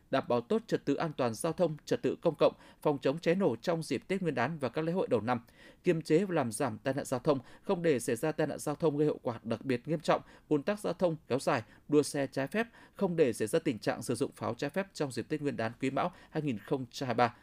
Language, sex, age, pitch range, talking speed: Vietnamese, male, 20-39, 135-175 Hz, 280 wpm